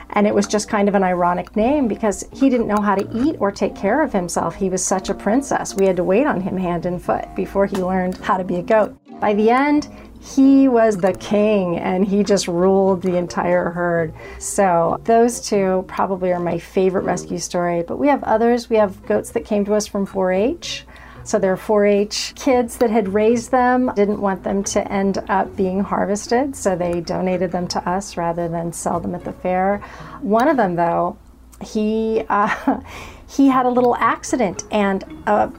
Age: 40-59